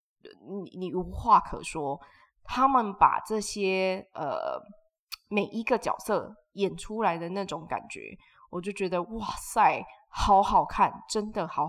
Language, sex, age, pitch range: Chinese, female, 20-39, 185-250 Hz